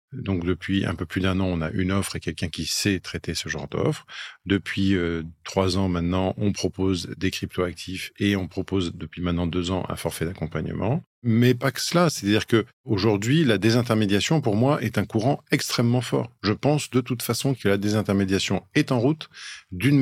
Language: French